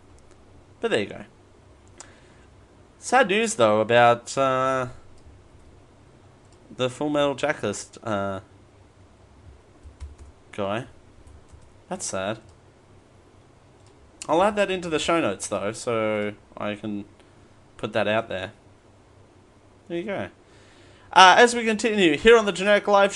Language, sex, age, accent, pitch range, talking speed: English, male, 30-49, Australian, 105-175 Hz, 115 wpm